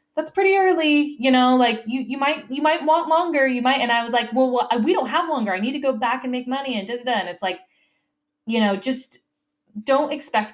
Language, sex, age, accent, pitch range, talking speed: English, female, 20-39, American, 175-255 Hz, 255 wpm